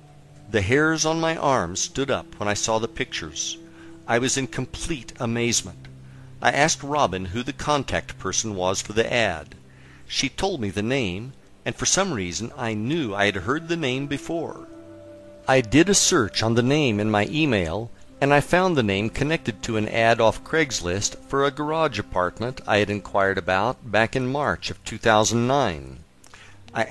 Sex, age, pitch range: male, 50-69, 100-140 Hz